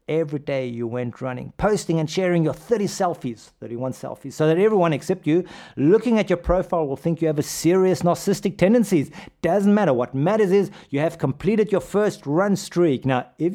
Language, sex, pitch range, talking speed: English, male, 145-205 Hz, 195 wpm